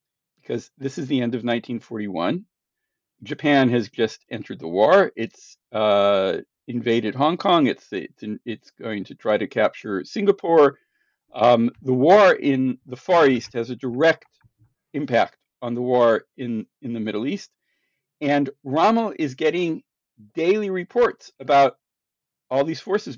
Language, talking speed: English, 145 wpm